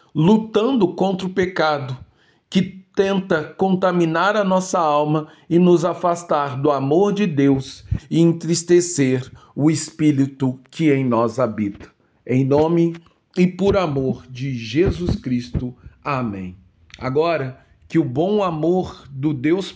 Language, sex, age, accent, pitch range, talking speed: Portuguese, male, 40-59, Brazilian, 125-165 Hz, 125 wpm